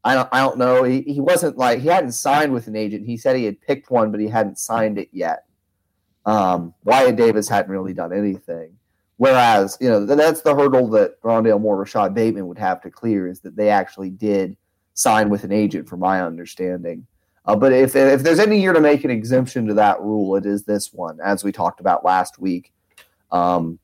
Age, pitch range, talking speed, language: 30-49, 95-115 Hz, 210 wpm, English